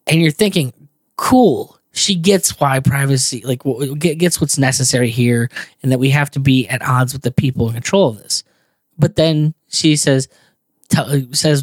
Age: 10-29